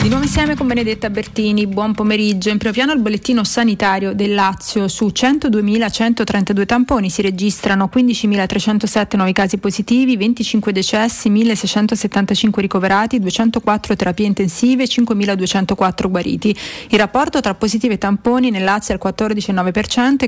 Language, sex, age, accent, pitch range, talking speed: Italian, female, 30-49, native, 190-225 Hz, 135 wpm